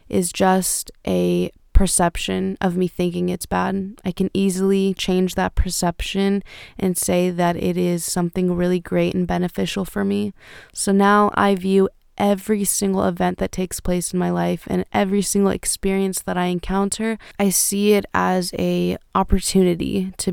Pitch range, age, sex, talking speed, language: 175-195 Hz, 20-39, female, 160 wpm, English